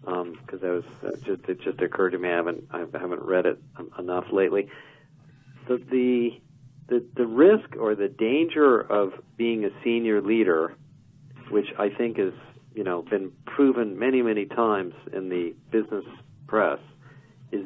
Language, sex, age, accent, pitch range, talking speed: English, male, 50-69, American, 100-135 Hz, 155 wpm